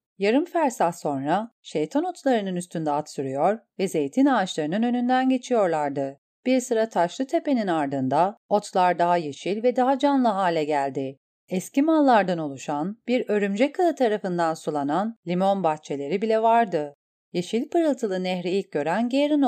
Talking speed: 135 wpm